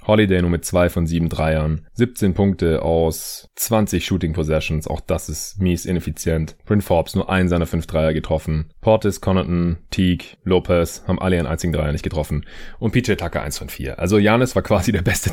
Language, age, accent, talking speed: German, 30-49, German, 190 wpm